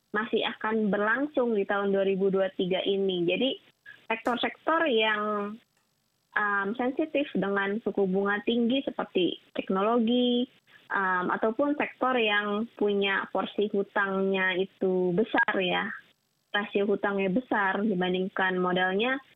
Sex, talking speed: female, 100 wpm